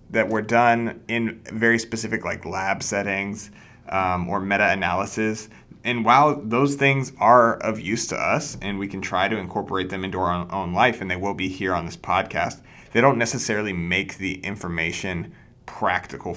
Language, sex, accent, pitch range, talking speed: English, male, American, 95-115 Hz, 170 wpm